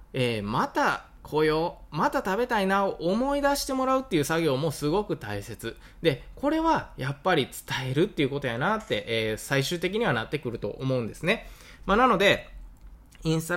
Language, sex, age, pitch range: Japanese, male, 20-39, 120-180 Hz